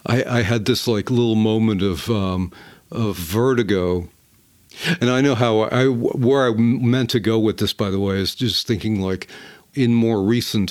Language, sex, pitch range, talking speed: English, male, 100-120 Hz, 190 wpm